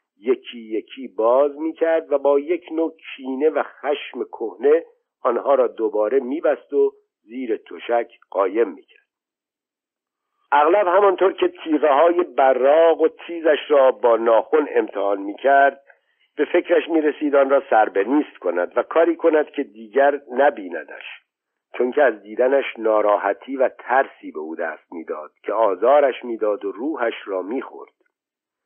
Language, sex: Persian, male